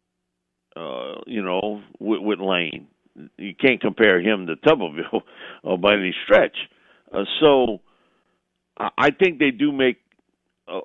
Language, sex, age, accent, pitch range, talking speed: English, male, 50-69, American, 95-145 Hz, 135 wpm